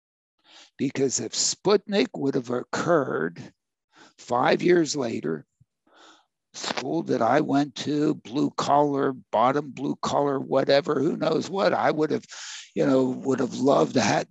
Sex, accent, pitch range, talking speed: male, American, 135-165 Hz, 140 wpm